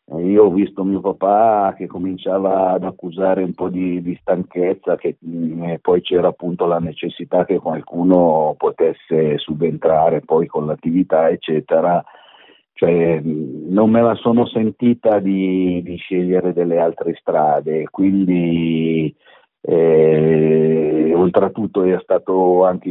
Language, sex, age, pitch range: Italian, male, 50-69, 80-95 Hz